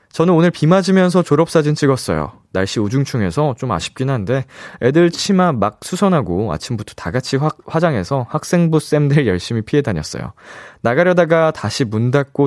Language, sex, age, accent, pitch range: Korean, male, 20-39, native, 105-160 Hz